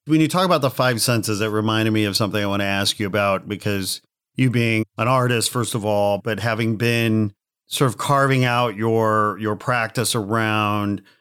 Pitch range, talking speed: 110-130 Hz, 200 wpm